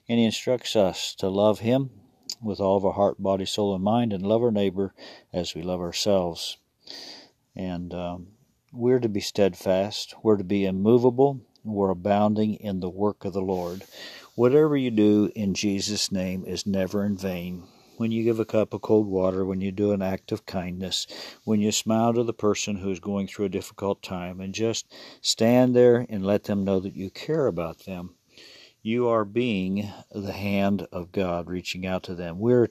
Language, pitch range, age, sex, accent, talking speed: English, 95-110 Hz, 50-69, male, American, 195 wpm